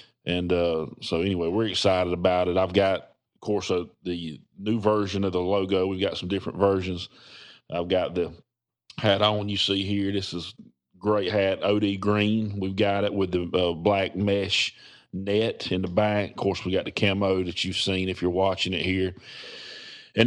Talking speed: 190 wpm